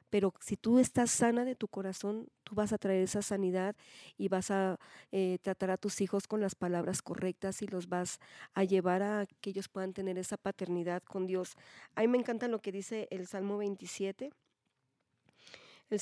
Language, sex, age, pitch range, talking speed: Spanish, female, 40-59, 190-215 Hz, 190 wpm